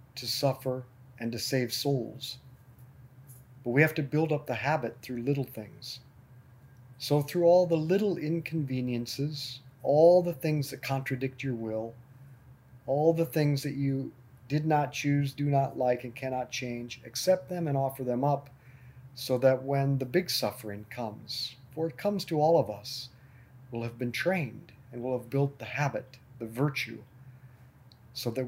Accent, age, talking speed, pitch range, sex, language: American, 50-69, 165 wpm, 125-150 Hz, male, English